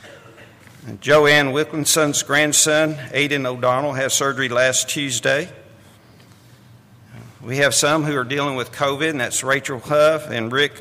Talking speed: 130 wpm